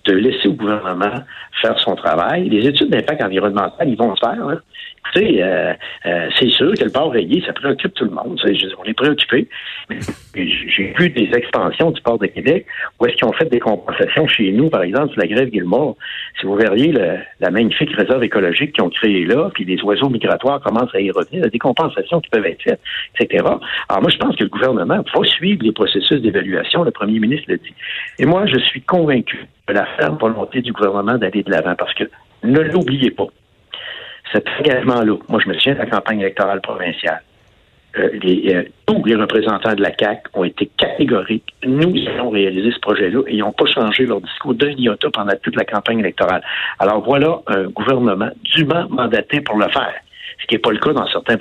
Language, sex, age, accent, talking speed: French, male, 60-79, French, 210 wpm